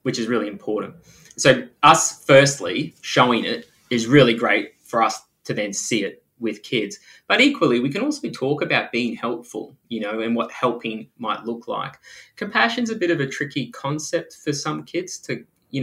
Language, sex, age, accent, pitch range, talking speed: English, male, 20-39, Australian, 115-140 Hz, 190 wpm